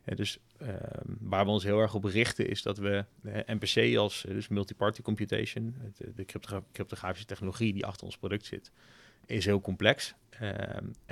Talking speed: 165 wpm